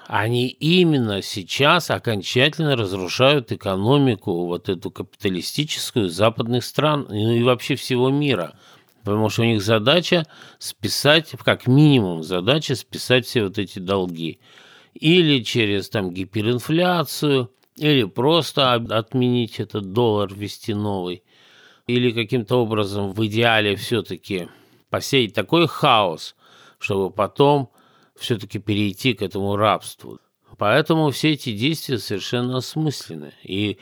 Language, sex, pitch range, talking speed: Russian, male, 100-135 Hz, 115 wpm